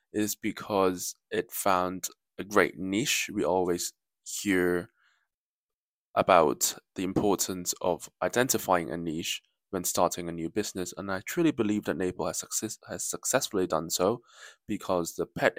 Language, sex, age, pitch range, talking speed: English, male, 20-39, 90-110 Hz, 140 wpm